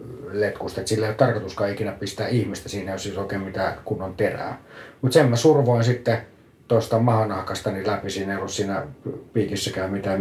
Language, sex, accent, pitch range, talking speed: Finnish, male, native, 100-135 Hz, 180 wpm